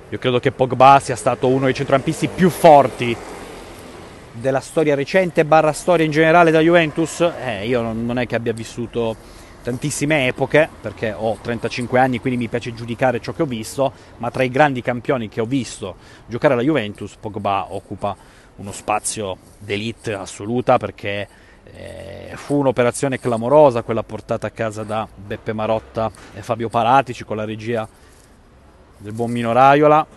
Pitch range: 105-130 Hz